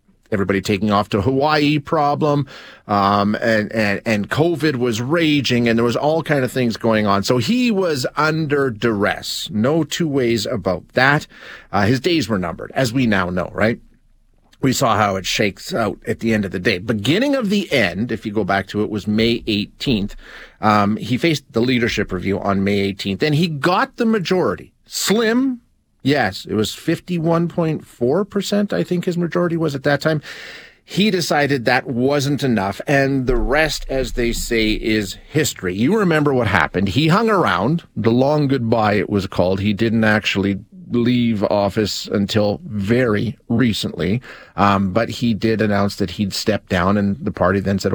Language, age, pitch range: English, 40-59, 105-150 Hz